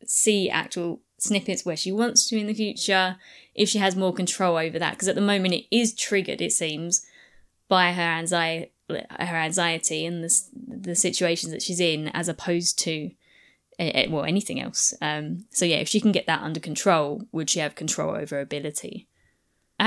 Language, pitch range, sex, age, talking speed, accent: English, 175-235 Hz, female, 20-39, 185 wpm, British